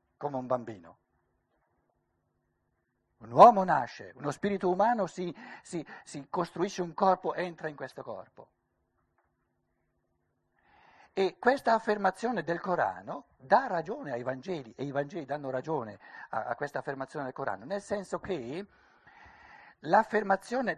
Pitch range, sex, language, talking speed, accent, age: 150-215 Hz, male, Italian, 120 wpm, native, 60-79